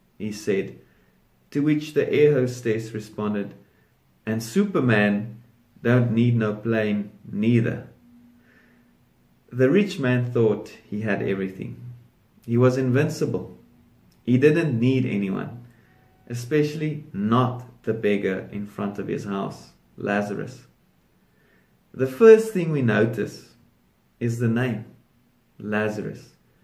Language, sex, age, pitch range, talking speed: English, male, 30-49, 110-135 Hz, 110 wpm